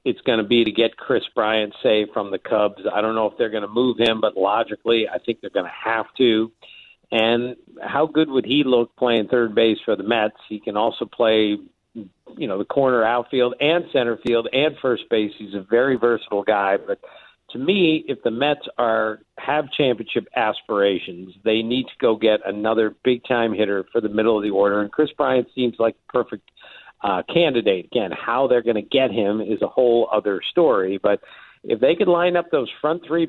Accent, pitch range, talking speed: American, 110-140 Hz, 210 wpm